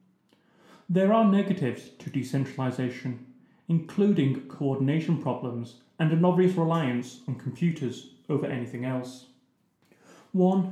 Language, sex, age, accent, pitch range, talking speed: English, male, 30-49, British, 130-175 Hz, 100 wpm